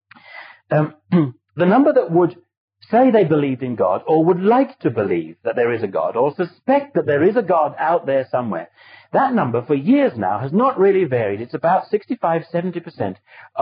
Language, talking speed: English, 185 wpm